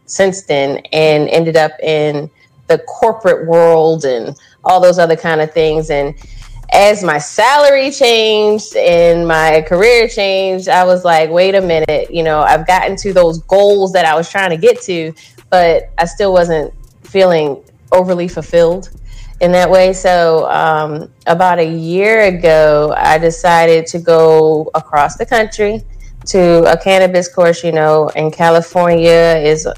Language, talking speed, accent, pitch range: English, 155 wpm, American, 160-185 Hz